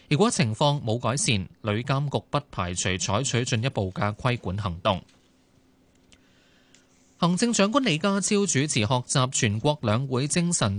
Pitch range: 110-150 Hz